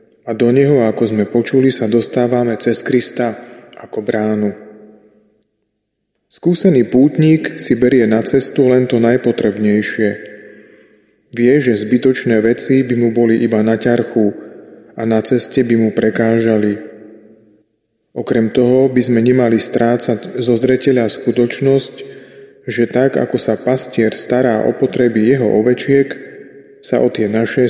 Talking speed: 130 wpm